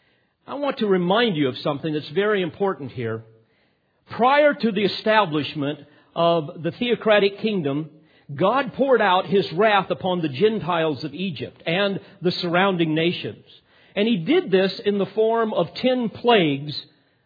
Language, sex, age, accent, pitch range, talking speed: English, male, 50-69, American, 150-220 Hz, 150 wpm